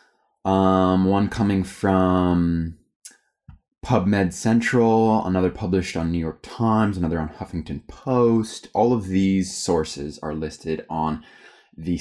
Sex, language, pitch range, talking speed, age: male, English, 80-100 Hz, 120 wpm, 20-39